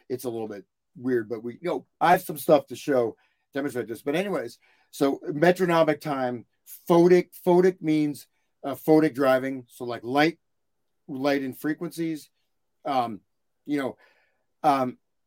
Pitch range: 125-165 Hz